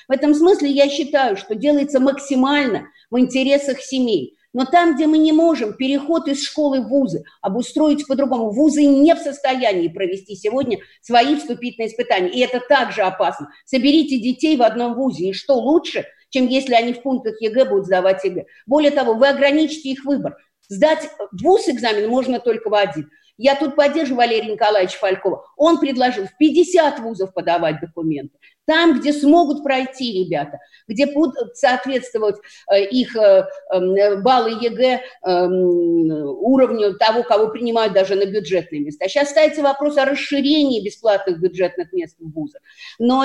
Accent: native